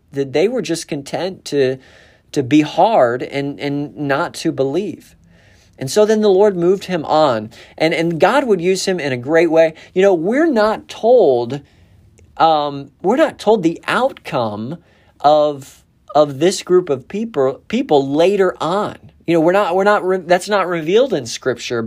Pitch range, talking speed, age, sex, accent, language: 125-175 Hz, 175 wpm, 40-59, male, American, English